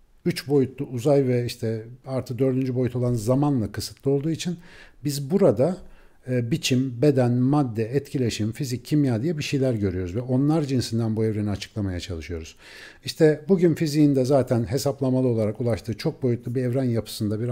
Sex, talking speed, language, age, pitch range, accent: male, 160 wpm, Turkish, 50-69, 115-150 Hz, native